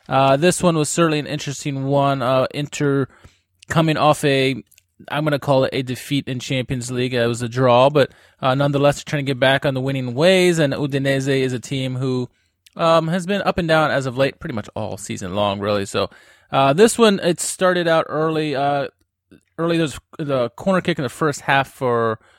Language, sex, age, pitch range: English, male, 20-39, 130-160 Hz